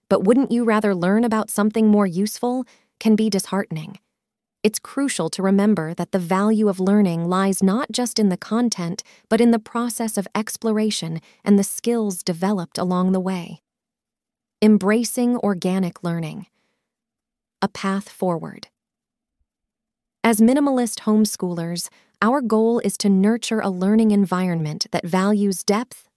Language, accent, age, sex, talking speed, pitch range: English, American, 20-39, female, 140 wpm, 185-230 Hz